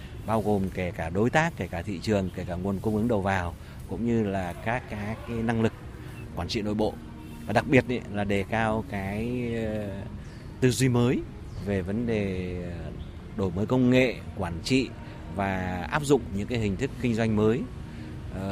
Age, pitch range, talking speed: 30-49, 95-115 Hz, 190 wpm